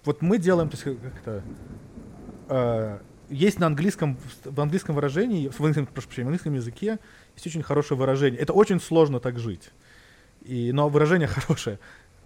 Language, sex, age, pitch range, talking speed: Russian, male, 30-49, 115-155 Hz, 150 wpm